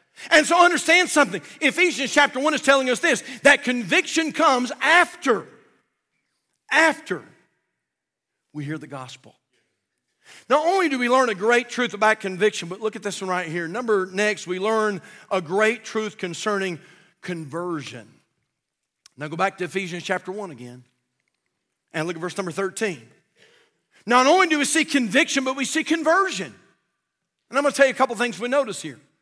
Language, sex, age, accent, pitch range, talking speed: English, male, 50-69, American, 210-280 Hz, 170 wpm